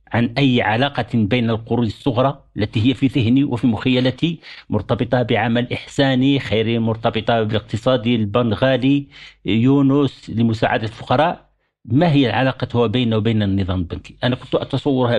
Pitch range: 115-135 Hz